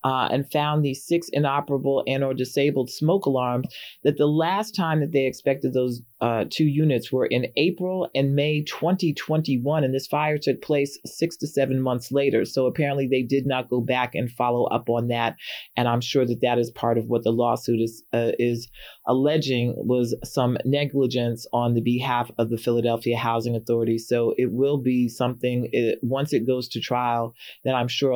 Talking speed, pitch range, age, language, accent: 190 wpm, 120-135 Hz, 30-49, English, American